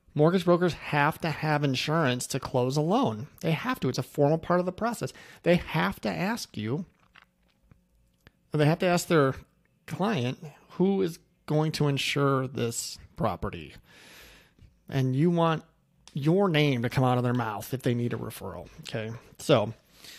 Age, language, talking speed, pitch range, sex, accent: 30-49, English, 170 wpm, 125-175 Hz, male, American